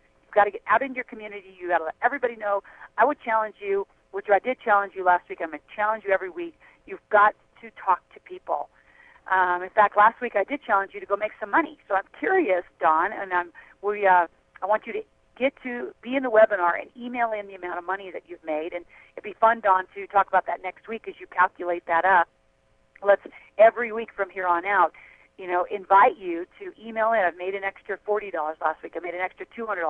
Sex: female